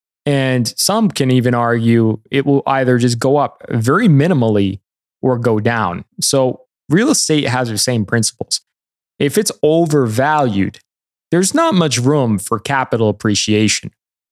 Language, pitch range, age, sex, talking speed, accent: English, 105-145 Hz, 20-39, male, 140 wpm, American